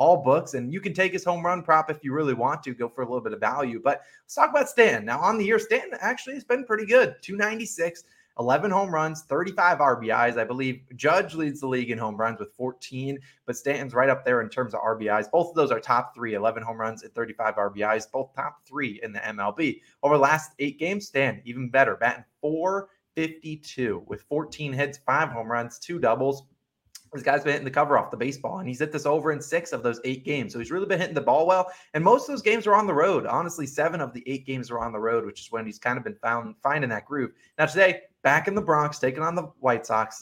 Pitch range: 120-155 Hz